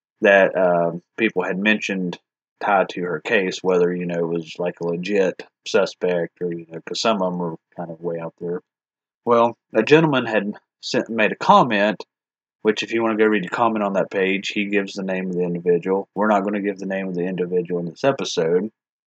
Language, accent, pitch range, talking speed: English, American, 90-110 Hz, 220 wpm